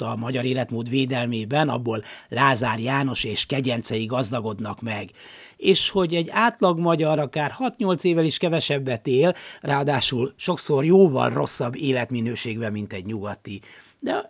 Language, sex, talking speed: Hungarian, male, 130 wpm